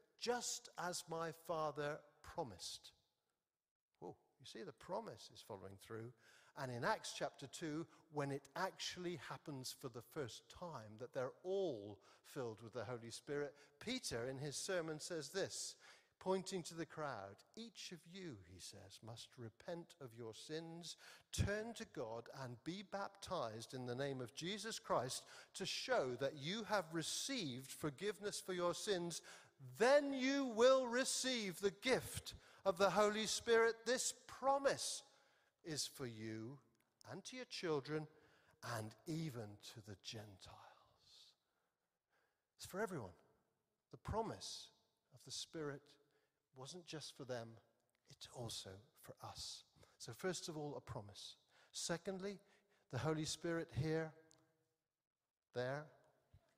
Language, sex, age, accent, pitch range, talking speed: English, male, 50-69, British, 125-190 Hz, 135 wpm